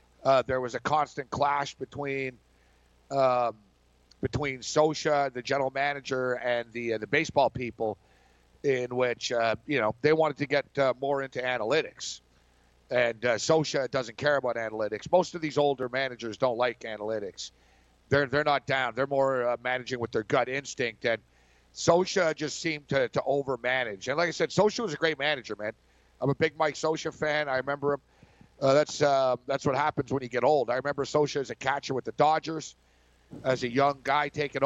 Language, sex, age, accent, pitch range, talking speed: English, male, 50-69, American, 120-145 Hz, 190 wpm